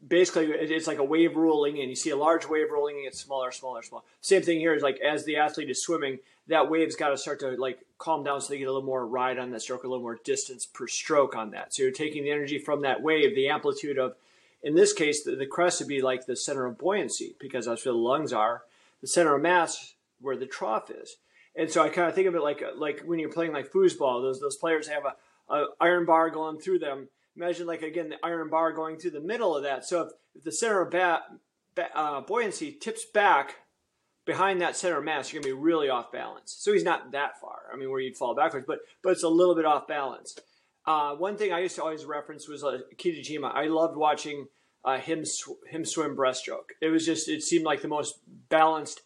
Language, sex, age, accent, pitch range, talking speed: English, male, 30-49, American, 145-220 Hz, 250 wpm